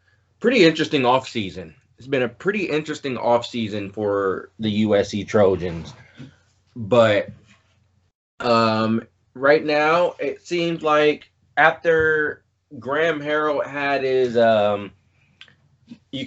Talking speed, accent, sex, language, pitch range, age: 105 wpm, American, male, English, 105-140 Hz, 20-39